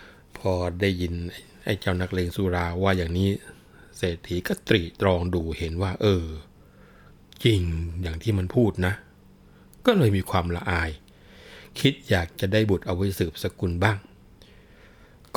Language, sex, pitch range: Thai, male, 90-110 Hz